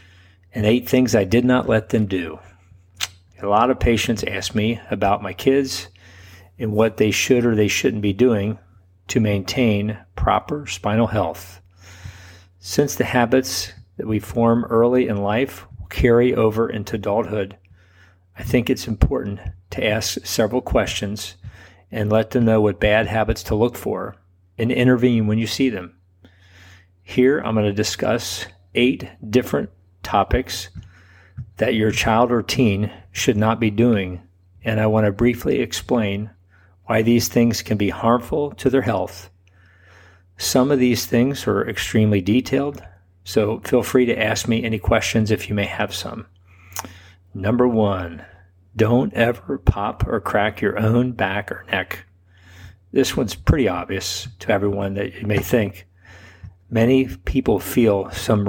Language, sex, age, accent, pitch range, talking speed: English, male, 40-59, American, 90-115 Hz, 150 wpm